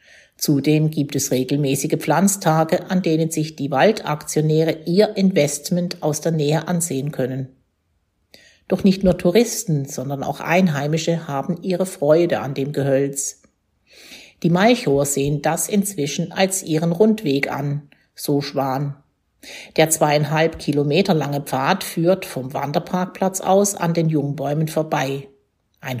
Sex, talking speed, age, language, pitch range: female, 125 wpm, 50-69, German, 140-175 Hz